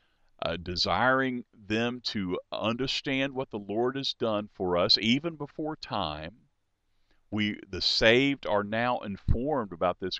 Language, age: English, 50-69